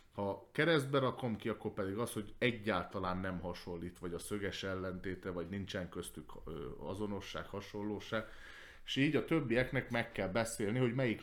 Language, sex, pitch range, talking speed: Hungarian, male, 90-115 Hz, 155 wpm